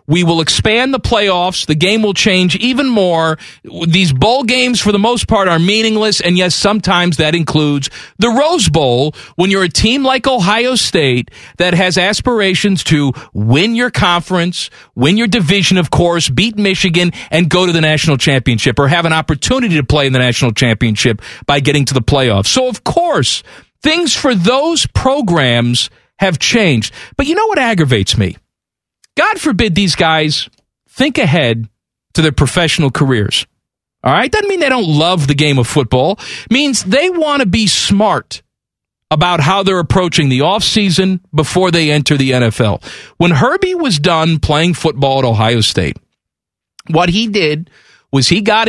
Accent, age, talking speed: American, 40-59, 170 wpm